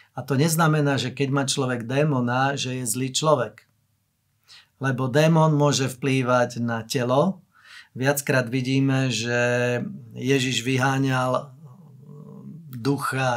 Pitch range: 125-150 Hz